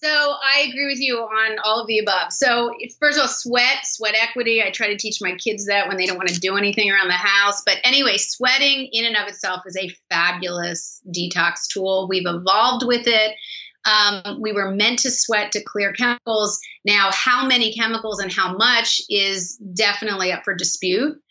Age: 30-49